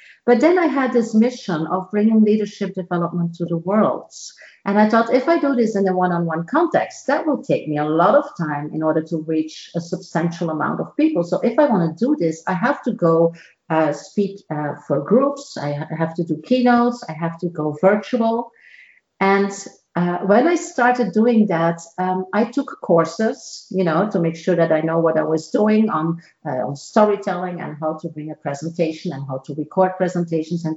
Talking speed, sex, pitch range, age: 210 wpm, female, 165-215 Hz, 50-69